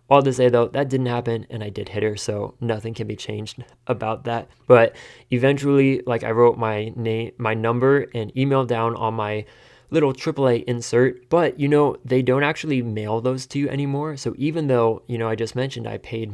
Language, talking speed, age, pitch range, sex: English, 210 wpm, 20-39, 115-130 Hz, male